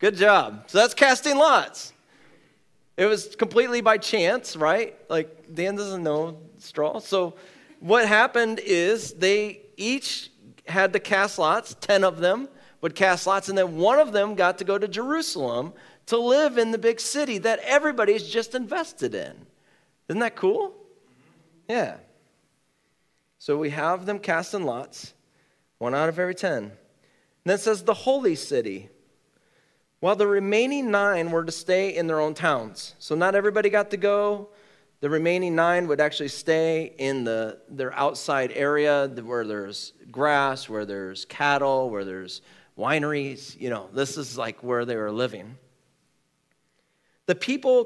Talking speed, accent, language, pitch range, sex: 155 wpm, American, English, 140-215 Hz, male